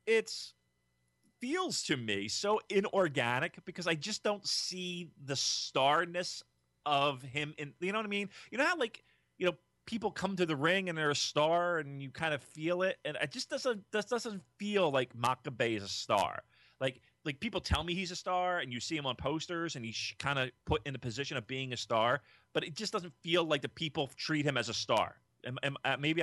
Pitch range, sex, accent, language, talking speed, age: 110-155 Hz, male, American, English, 220 wpm, 30-49